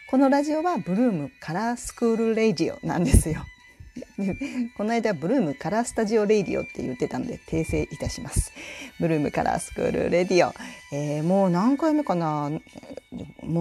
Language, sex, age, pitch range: Japanese, female, 40-59, 155-250 Hz